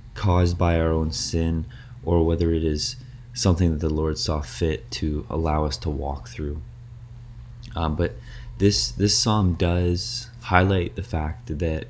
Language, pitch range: English, 80-120 Hz